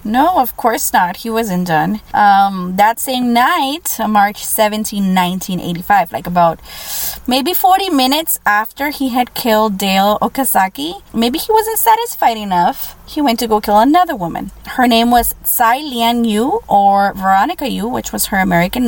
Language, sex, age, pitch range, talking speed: English, female, 20-39, 195-255 Hz, 160 wpm